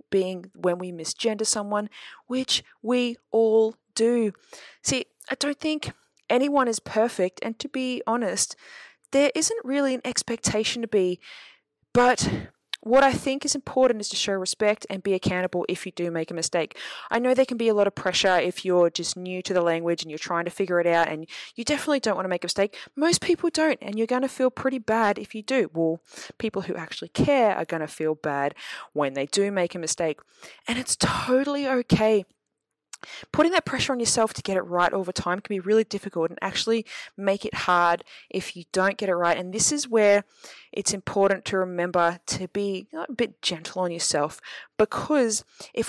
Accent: Australian